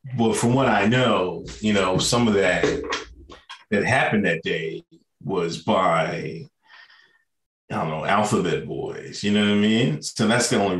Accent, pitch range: American, 110-150 Hz